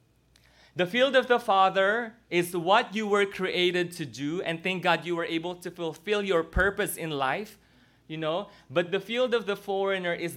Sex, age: male, 20-39